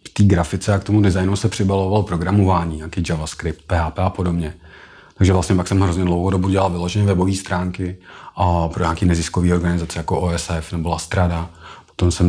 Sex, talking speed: male, 175 wpm